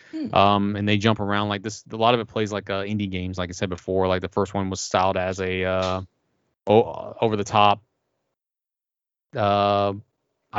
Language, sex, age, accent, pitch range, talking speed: English, male, 30-49, American, 95-110 Hz, 185 wpm